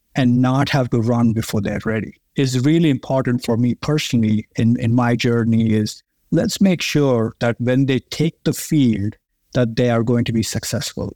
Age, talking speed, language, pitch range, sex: 50-69, 190 wpm, English, 115-140 Hz, male